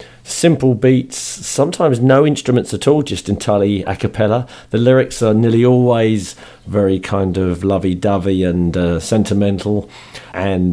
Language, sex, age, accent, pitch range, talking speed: English, male, 50-69, British, 90-115 Hz, 135 wpm